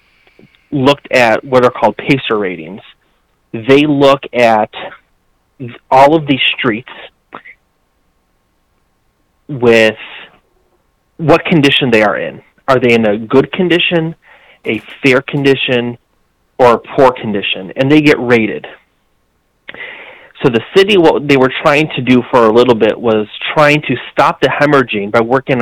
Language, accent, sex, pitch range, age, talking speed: English, American, male, 110-140 Hz, 30-49, 135 wpm